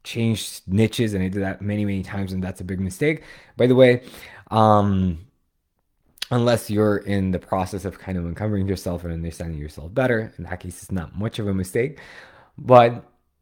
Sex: male